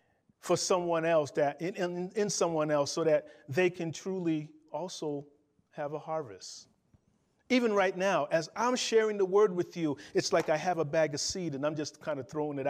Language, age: English, 40-59